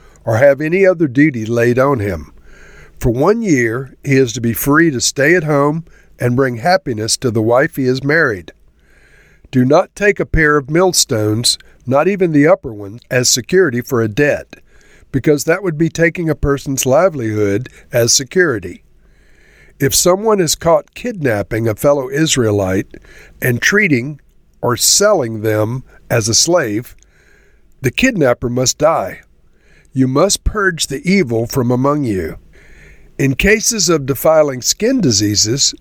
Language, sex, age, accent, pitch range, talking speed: English, male, 50-69, American, 120-165 Hz, 150 wpm